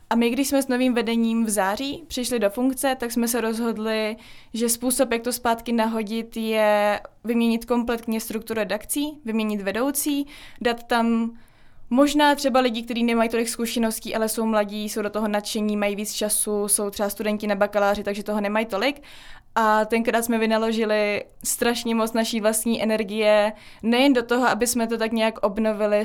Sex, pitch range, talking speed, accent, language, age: female, 215-245 Hz, 175 wpm, native, Czech, 20-39